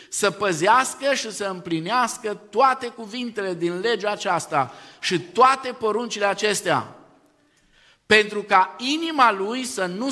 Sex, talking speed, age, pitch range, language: male, 120 wpm, 50-69, 170-235 Hz, Romanian